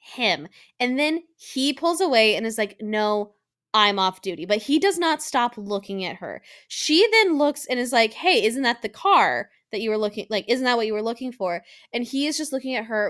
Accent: American